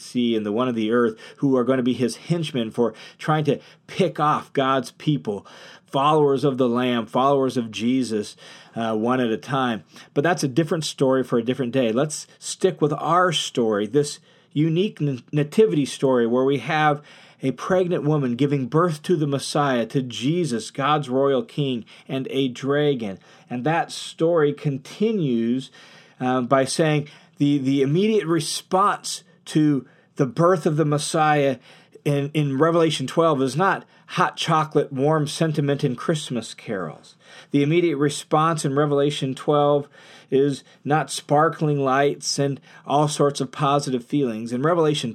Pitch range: 125-155 Hz